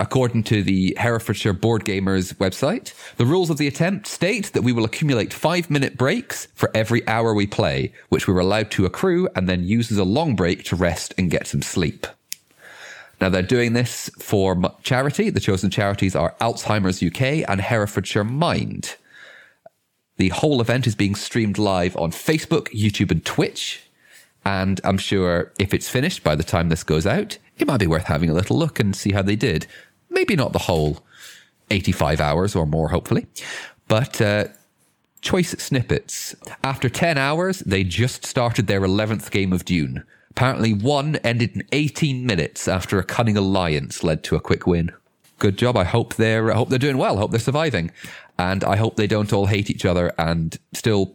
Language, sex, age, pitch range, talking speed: English, male, 30-49, 95-120 Hz, 185 wpm